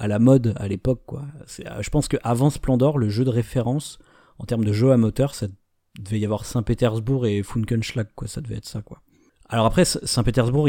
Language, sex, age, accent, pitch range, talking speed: French, male, 30-49, French, 105-130 Hz, 210 wpm